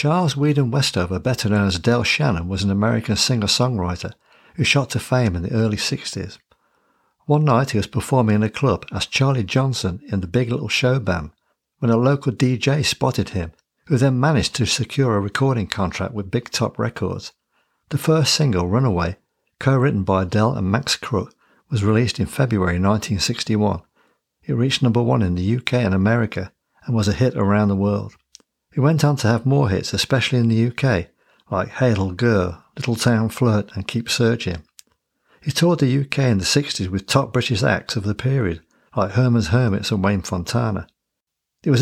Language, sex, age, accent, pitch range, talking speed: English, male, 60-79, British, 100-130 Hz, 185 wpm